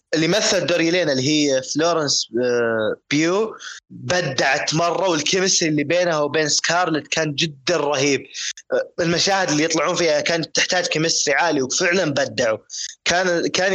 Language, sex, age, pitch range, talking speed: Arabic, male, 20-39, 130-170 Hz, 125 wpm